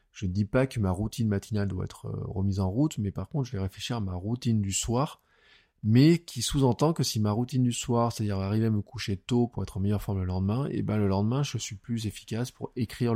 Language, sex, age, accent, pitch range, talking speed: French, male, 20-39, French, 95-125 Hz, 255 wpm